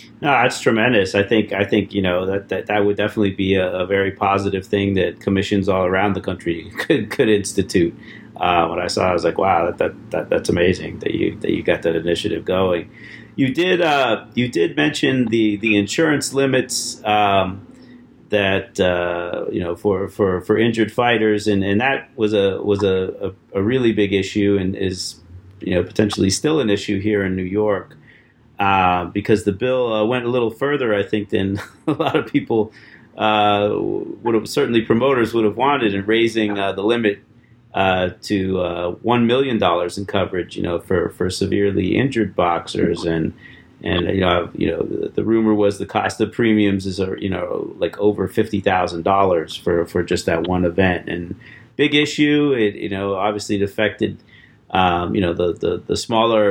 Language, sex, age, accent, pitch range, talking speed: English, male, 40-59, American, 95-110 Hz, 200 wpm